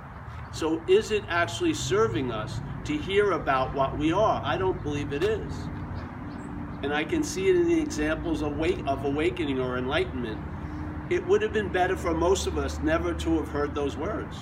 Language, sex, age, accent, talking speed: English, male, 50-69, American, 190 wpm